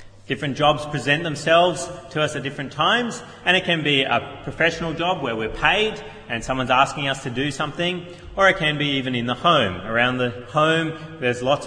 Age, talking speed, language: 30-49, 200 wpm, English